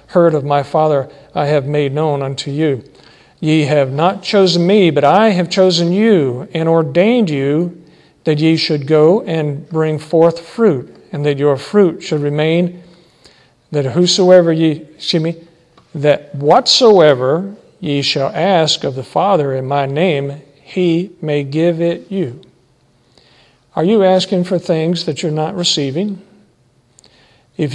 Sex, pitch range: male, 140-175 Hz